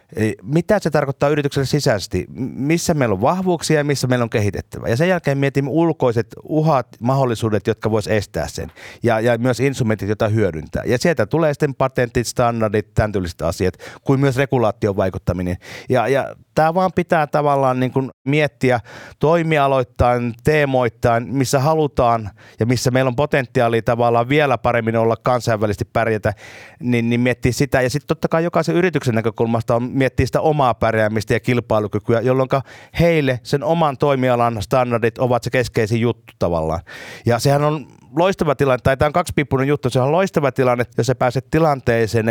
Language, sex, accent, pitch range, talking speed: Finnish, male, native, 115-140 Hz, 160 wpm